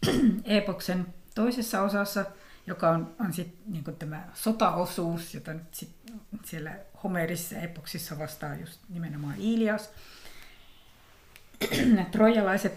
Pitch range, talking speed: 170-210 Hz, 100 wpm